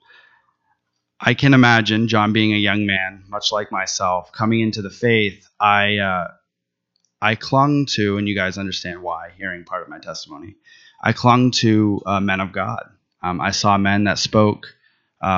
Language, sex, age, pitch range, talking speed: English, male, 20-39, 95-110 Hz, 170 wpm